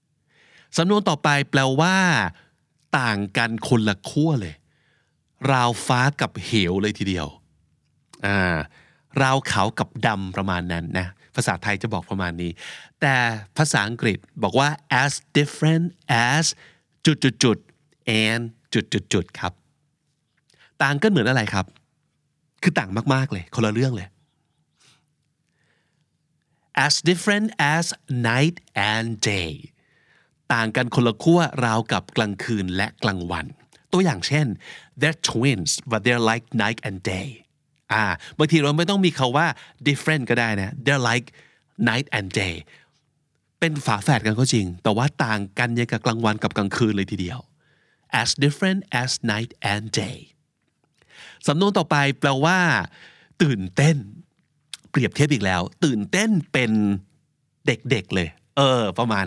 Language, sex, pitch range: Thai, male, 105-150 Hz